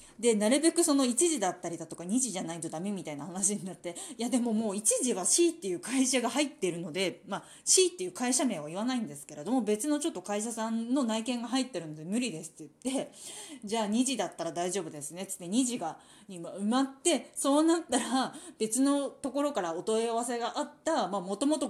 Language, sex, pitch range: Japanese, female, 205-295 Hz